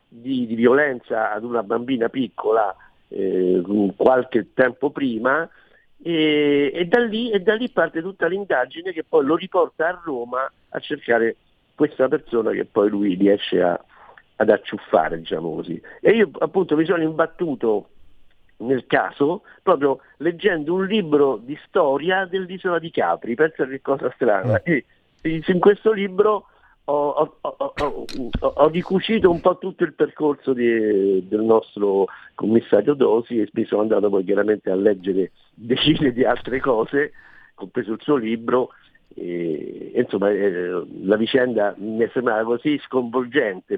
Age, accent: 50-69, native